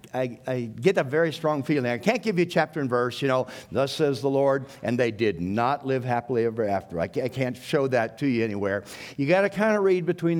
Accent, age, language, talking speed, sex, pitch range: American, 60-79, English, 260 wpm, male, 130-165 Hz